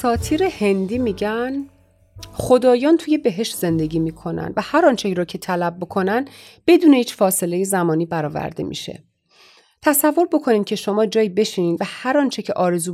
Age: 30-49